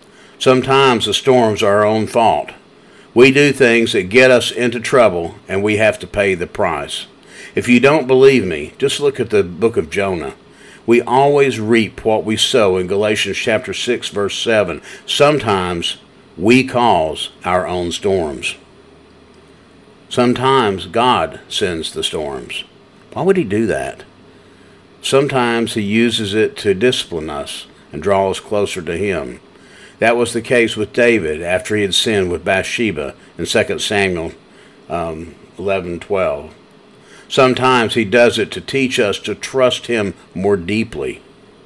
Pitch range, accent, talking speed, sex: 100-130 Hz, American, 150 wpm, male